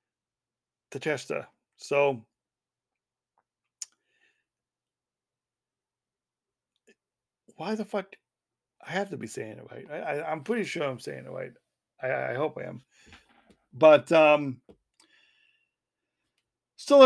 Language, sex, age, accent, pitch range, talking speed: English, male, 60-79, American, 150-220 Hz, 95 wpm